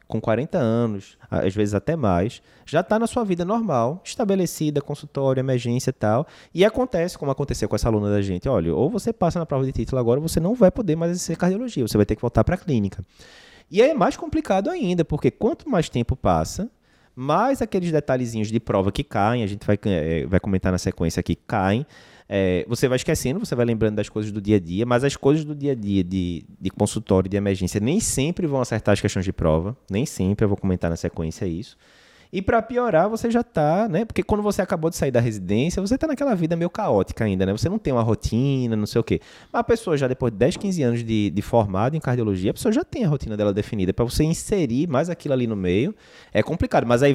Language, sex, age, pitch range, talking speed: Portuguese, male, 20-39, 105-160 Hz, 235 wpm